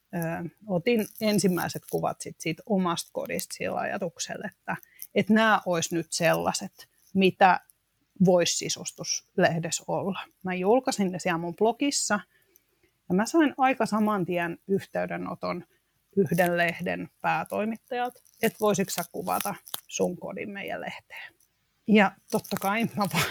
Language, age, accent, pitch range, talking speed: Finnish, 30-49, native, 180-220 Hz, 115 wpm